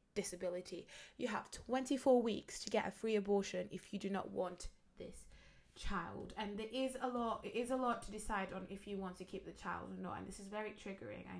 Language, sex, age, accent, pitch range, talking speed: English, female, 20-39, British, 195-240 Hz, 230 wpm